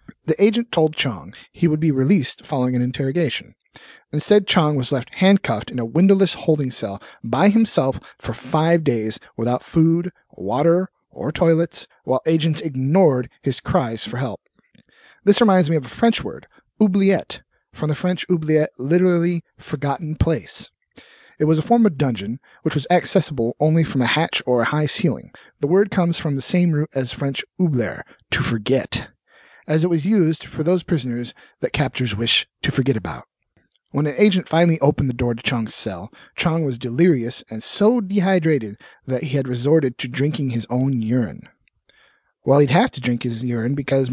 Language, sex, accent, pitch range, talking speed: English, male, American, 125-170 Hz, 175 wpm